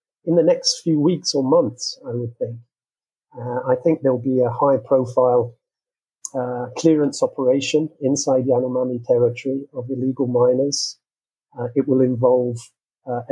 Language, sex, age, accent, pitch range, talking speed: English, male, 40-59, British, 120-140 Hz, 145 wpm